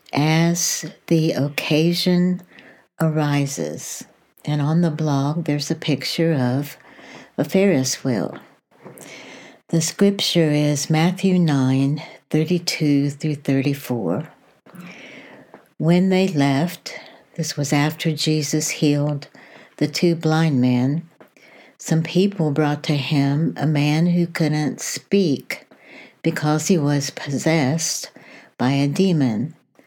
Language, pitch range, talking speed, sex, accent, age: English, 140-175 Hz, 105 wpm, female, American, 60-79